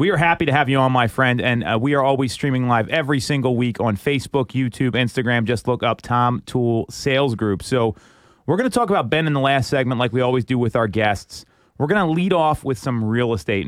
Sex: male